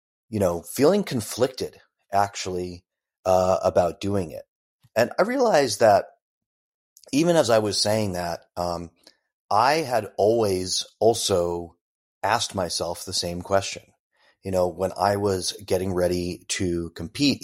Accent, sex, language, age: American, male, English, 30-49